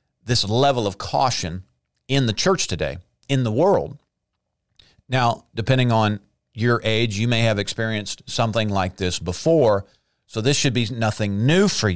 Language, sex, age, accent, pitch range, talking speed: English, male, 50-69, American, 105-135 Hz, 155 wpm